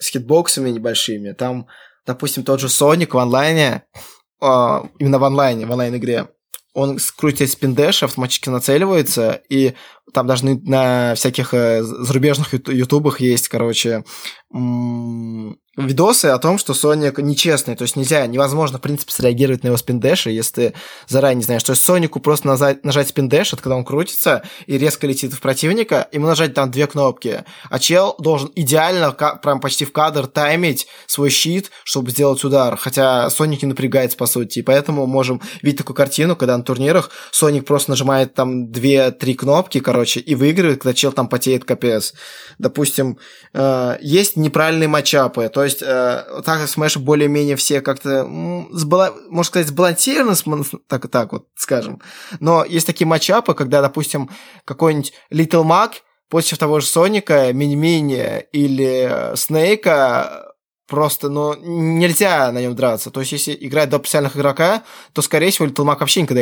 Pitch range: 130-155 Hz